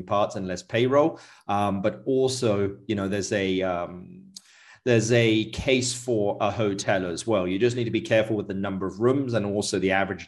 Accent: British